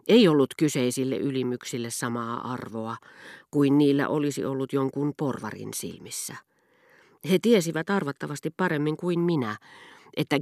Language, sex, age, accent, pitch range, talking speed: Finnish, female, 40-59, native, 120-155 Hz, 115 wpm